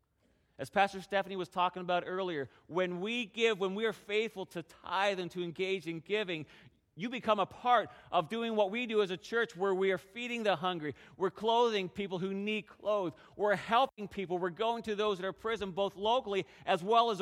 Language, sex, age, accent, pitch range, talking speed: English, male, 40-59, American, 145-195 Hz, 210 wpm